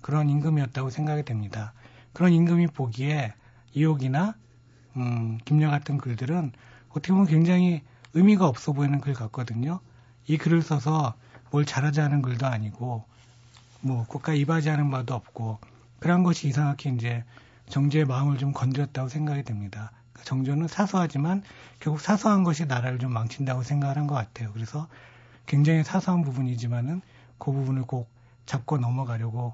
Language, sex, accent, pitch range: Korean, male, native, 120-150 Hz